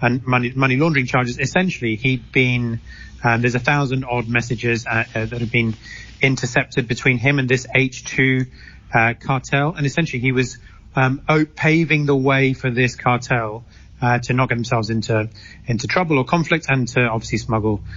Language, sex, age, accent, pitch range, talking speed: English, male, 30-49, British, 120-145 Hz, 175 wpm